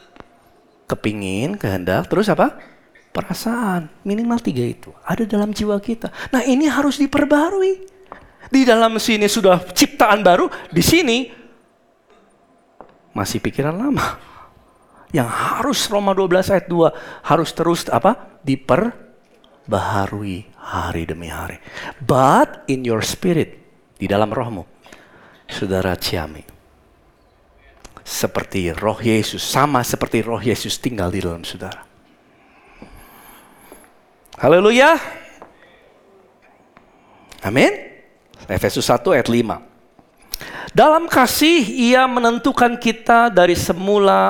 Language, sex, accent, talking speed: Indonesian, male, native, 100 wpm